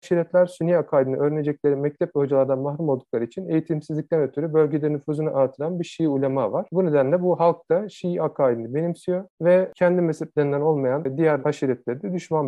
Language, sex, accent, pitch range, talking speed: Turkish, male, native, 135-160 Hz, 165 wpm